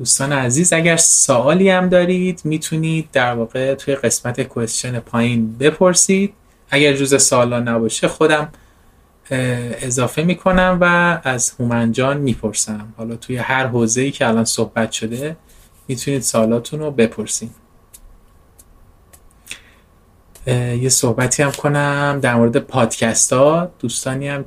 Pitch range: 110-140 Hz